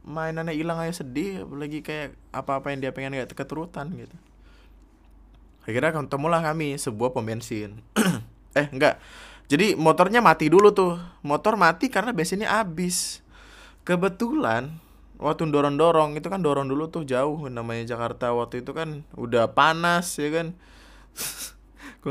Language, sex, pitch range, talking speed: Indonesian, male, 120-165 Hz, 135 wpm